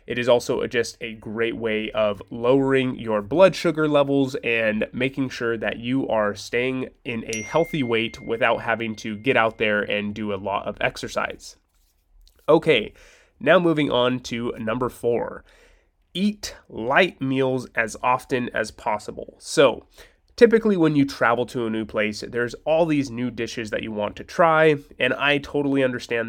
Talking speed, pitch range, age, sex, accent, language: 165 wpm, 110-140 Hz, 20-39, male, American, English